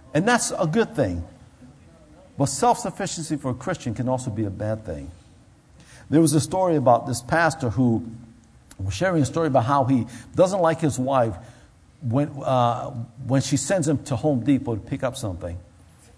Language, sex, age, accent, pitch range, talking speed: English, male, 50-69, American, 125-160 Hz, 180 wpm